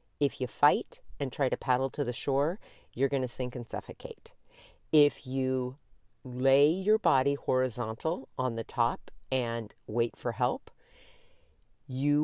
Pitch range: 120-150 Hz